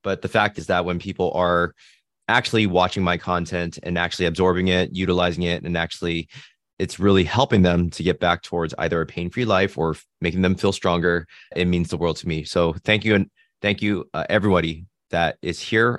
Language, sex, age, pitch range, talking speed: English, male, 20-39, 85-105 Hz, 205 wpm